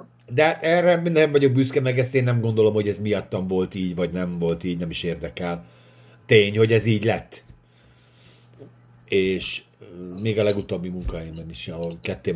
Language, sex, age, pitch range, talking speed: Hungarian, male, 50-69, 85-115 Hz, 170 wpm